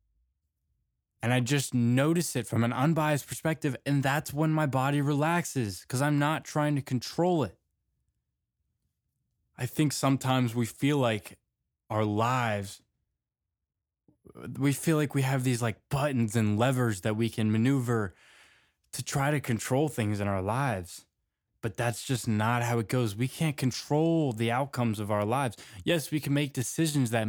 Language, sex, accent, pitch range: English, male, American, 105-140 Hz